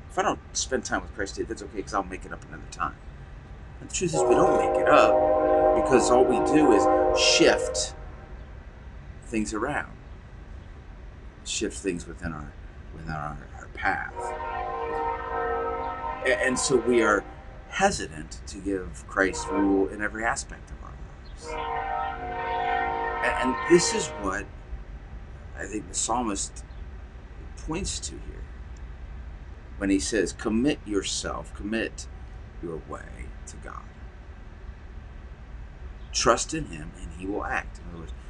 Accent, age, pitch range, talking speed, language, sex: American, 40-59, 70-90 Hz, 140 wpm, English, male